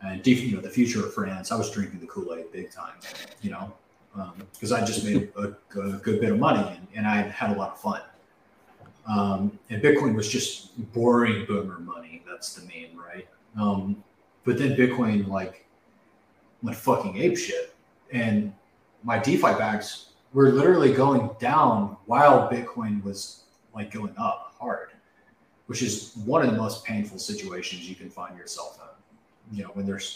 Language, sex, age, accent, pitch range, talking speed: English, male, 30-49, American, 100-125 Hz, 175 wpm